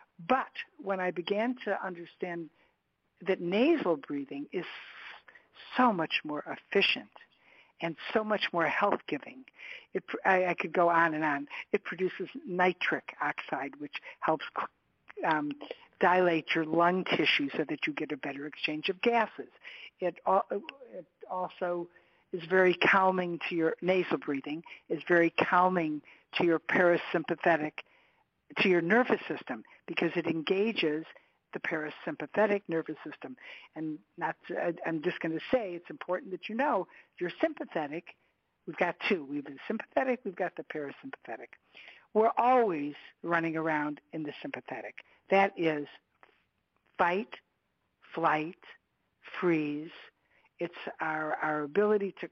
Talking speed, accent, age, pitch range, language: 130 wpm, American, 60-79, 160-210 Hz, English